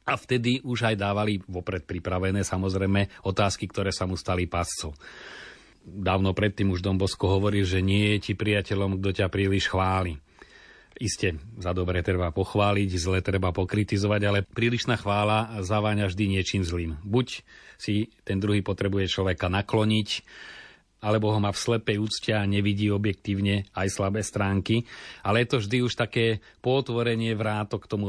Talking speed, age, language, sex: 155 wpm, 40-59, Slovak, male